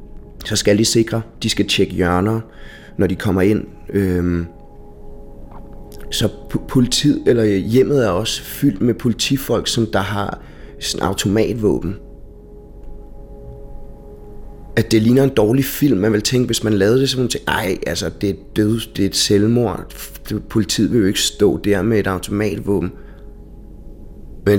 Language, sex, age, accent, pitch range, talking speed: Danish, male, 30-49, native, 90-110 Hz, 135 wpm